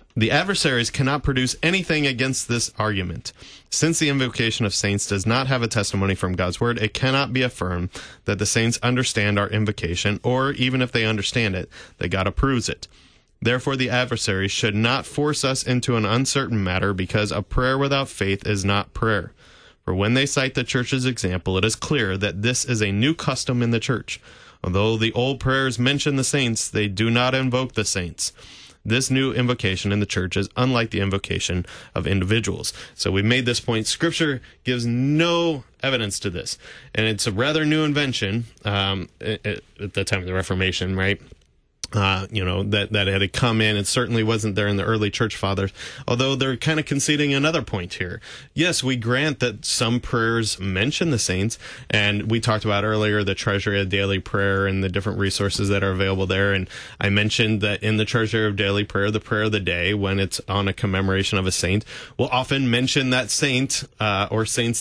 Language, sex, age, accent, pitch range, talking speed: English, male, 30-49, American, 100-130 Hz, 200 wpm